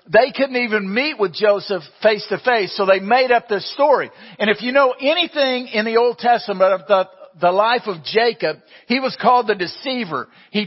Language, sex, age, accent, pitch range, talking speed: English, male, 50-69, American, 190-240 Hz, 190 wpm